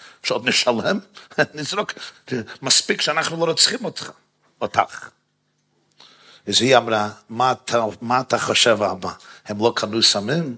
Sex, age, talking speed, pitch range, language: male, 50-69, 110 wpm, 110-140 Hz, Hebrew